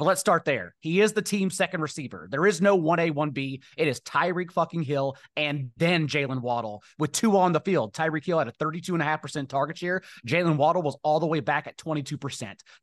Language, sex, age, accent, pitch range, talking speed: English, male, 30-49, American, 140-170 Hz, 210 wpm